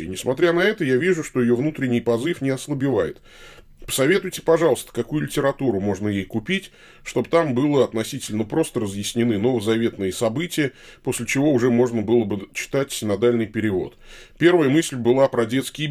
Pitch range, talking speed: 110-160 Hz, 150 wpm